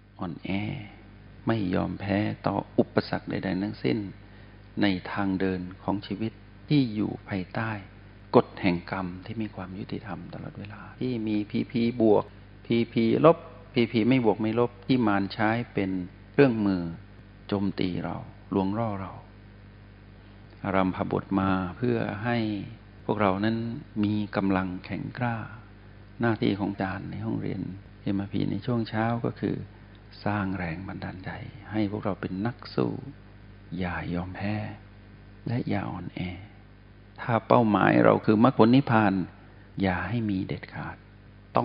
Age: 60-79